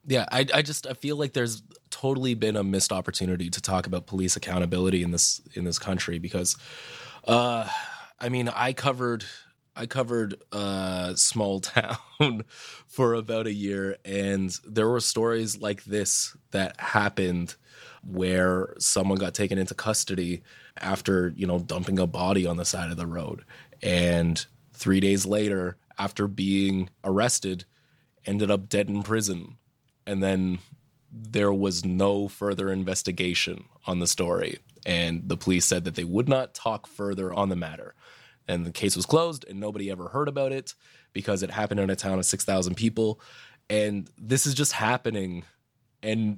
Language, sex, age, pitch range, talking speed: English, male, 20-39, 90-115 Hz, 160 wpm